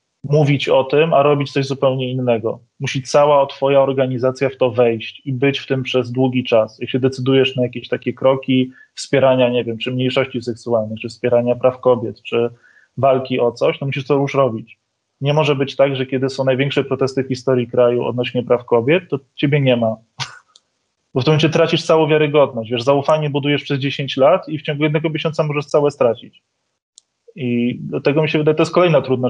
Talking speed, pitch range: 195 wpm, 125-140 Hz